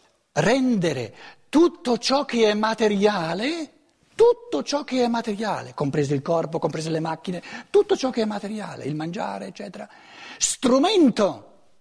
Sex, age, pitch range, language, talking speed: male, 60-79, 150-230 Hz, Italian, 130 wpm